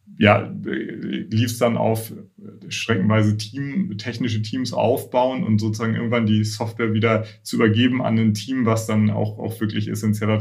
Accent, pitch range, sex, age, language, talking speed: German, 105-120 Hz, male, 30-49, German, 150 wpm